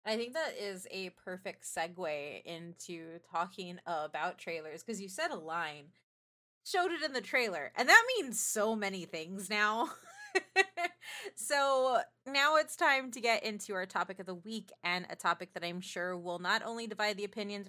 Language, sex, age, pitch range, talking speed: English, female, 20-39, 180-260 Hz, 175 wpm